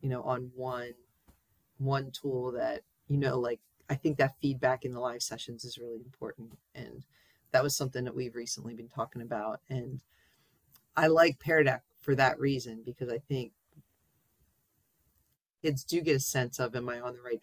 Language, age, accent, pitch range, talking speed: English, 40-59, American, 120-145 Hz, 180 wpm